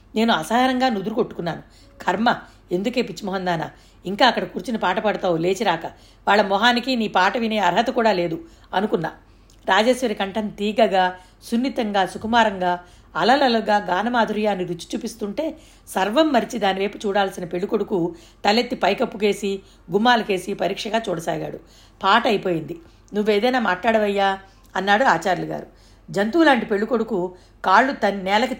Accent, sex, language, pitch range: native, female, Telugu, 190-240 Hz